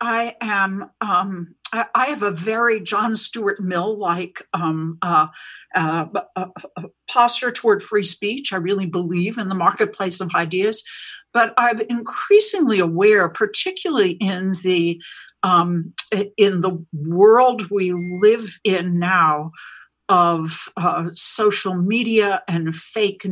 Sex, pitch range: female, 170-225 Hz